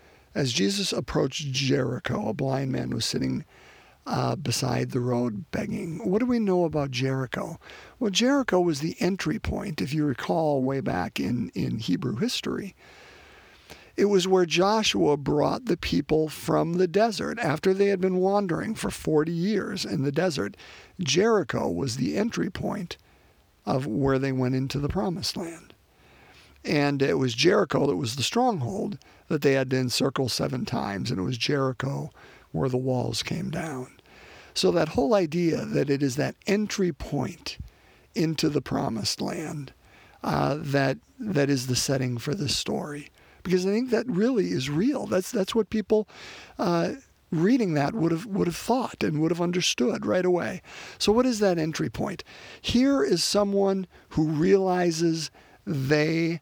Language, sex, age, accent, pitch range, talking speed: English, male, 50-69, American, 140-200 Hz, 165 wpm